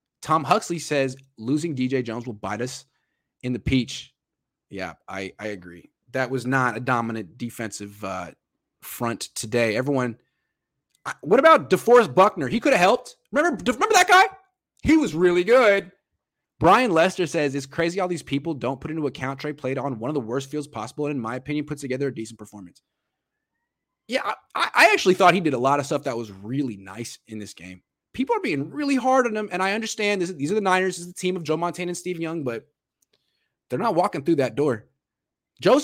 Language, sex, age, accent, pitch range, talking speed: English, male, 20-39, American, 130-185 Hz, 205 wpm